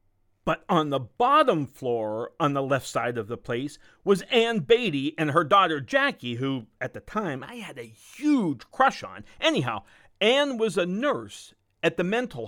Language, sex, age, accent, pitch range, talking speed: English, male, 50-69, American, 140-235 Hz, 180 wpm